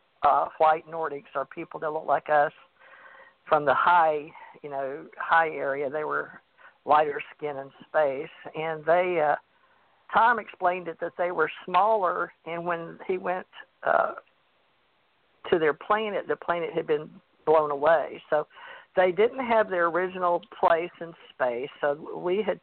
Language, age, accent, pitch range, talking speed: English, 50-69, American, 155-190 Hz, 155 wpm